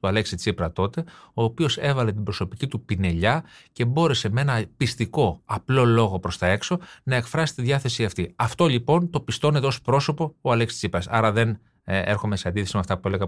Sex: male